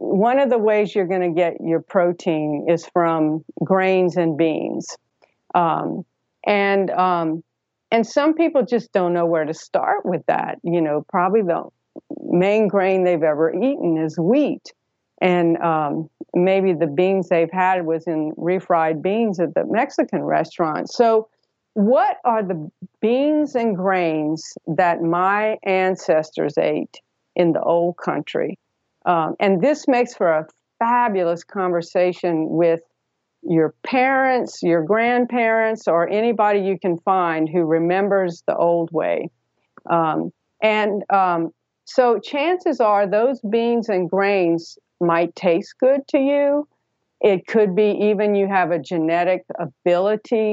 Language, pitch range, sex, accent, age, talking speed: English, 170-215 Hz, female, American, 50-69, 140 wpm